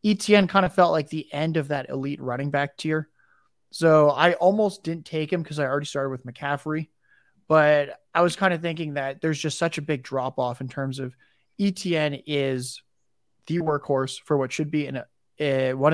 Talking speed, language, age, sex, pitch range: 205 wpm, English, 20-39, male, 135-165 Hz